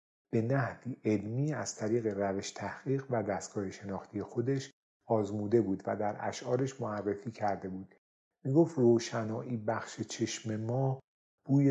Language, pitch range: Persian, 100-120 Hz